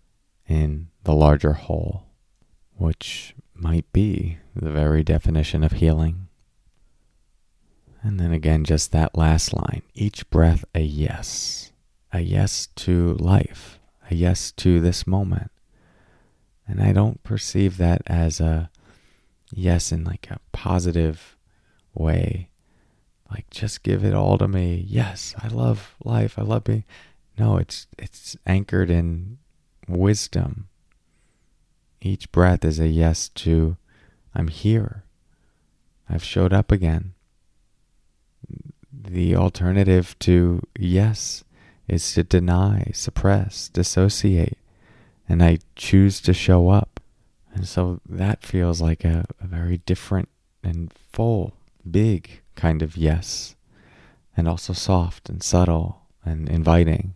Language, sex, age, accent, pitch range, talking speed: English, male, 30-49, American, 80-100 Hz, 120 wpm